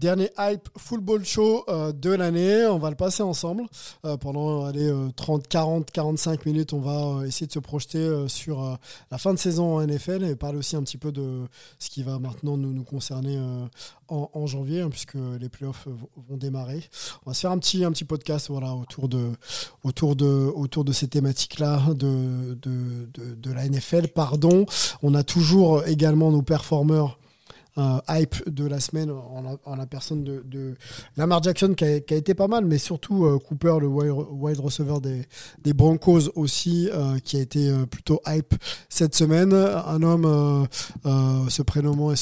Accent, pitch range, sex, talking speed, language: French, 135-160 Hz, male, 175 wpm, French